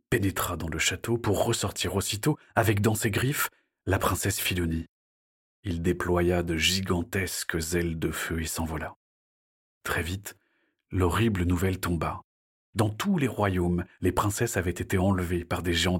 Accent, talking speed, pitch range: French, 150 wpm, 85-105 Hz